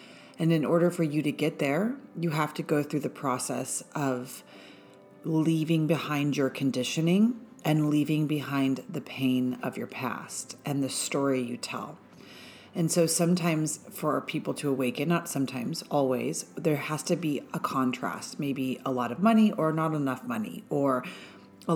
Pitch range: 135-165 Hz